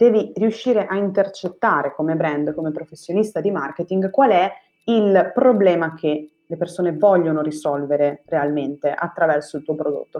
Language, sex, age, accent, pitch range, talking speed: Italian, female, 20-39, native, 150-195 Hz, 140 wpm